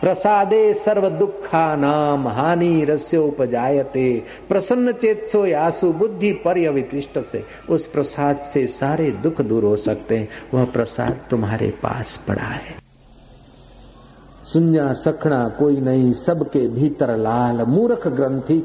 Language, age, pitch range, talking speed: Hindi, 60-79, 130-195 Hz, 115 wpm